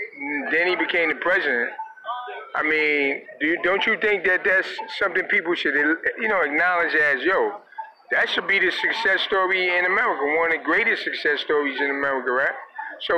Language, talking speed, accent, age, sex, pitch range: English, 180 wpm, American, 30-49, male, 150-245 Hz